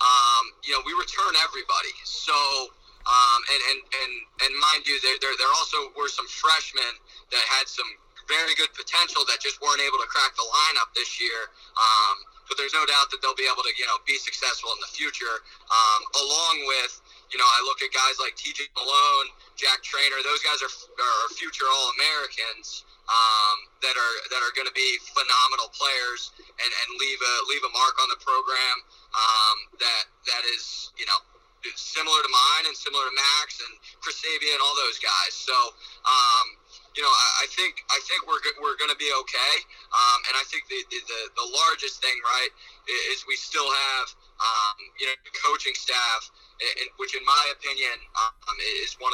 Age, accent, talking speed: 20-39, American, 190 wpm